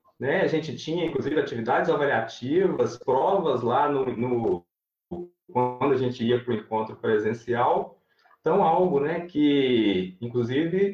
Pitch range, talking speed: 120-195 Hz, 130 wpm